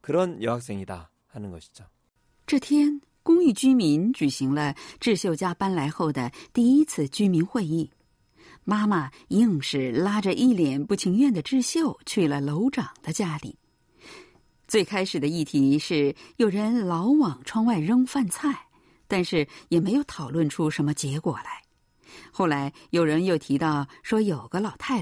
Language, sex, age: Chinese, female, 50-69